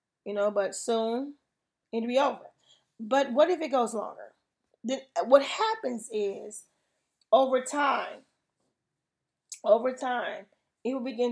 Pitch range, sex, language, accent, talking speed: 220-265 Hz, female, English, American, 125 wpm